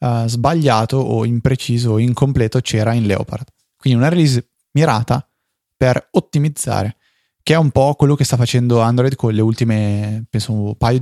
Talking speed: 160 wpm